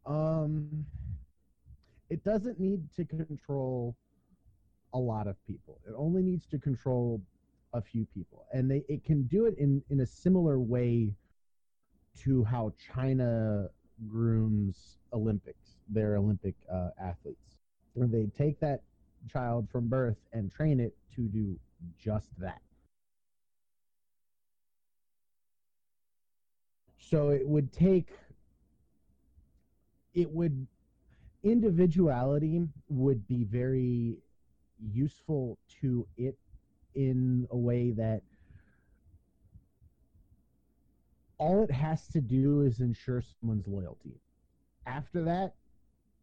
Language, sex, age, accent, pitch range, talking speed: English, male, 30-49, American, 110-140 Hz, 105 wpm